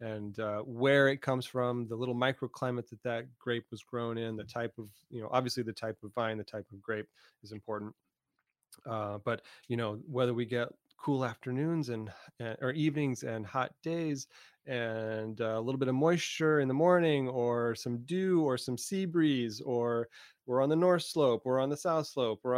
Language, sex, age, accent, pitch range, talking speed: English, male, 30-49, American, 115-135 Hz, 200 wpm